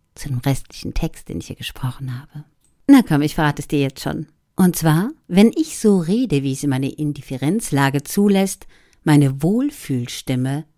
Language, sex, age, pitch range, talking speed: German, female, 50-69, 145-205 Hz, 165 wpm